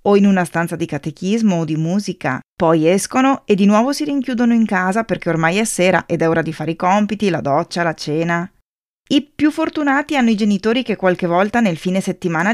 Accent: native